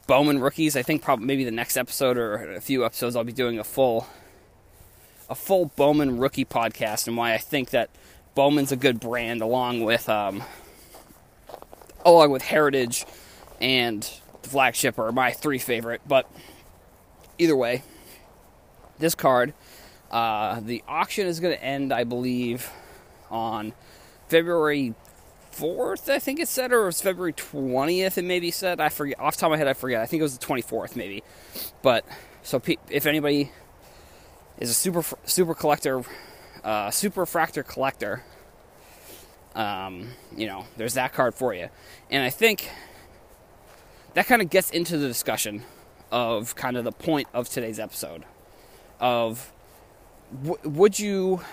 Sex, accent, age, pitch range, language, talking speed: male, American, 20-39, 120-165 Hz, English, 160 wpm